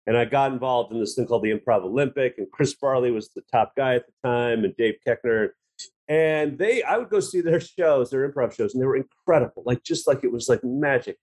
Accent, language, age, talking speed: American, English, 40-59, 245 wpm